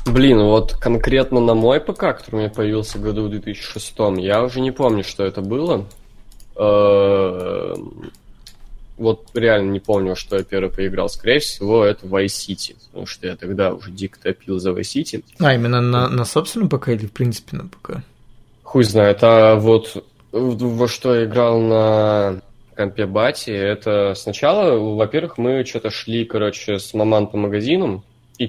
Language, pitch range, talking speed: Russian, 100-120 Hz, 160 wpm